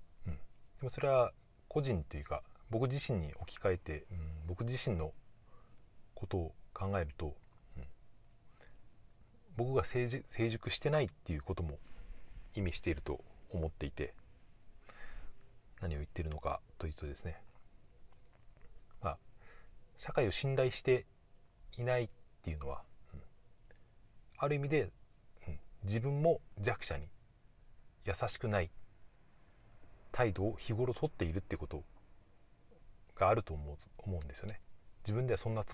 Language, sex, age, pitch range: Japanese, male, 40-59, 85-115 Hz